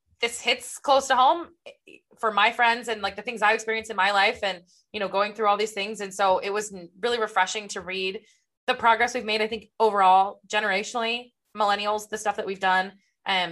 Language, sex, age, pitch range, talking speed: English, female, 20-39, 175-225 Hz, 215 wpm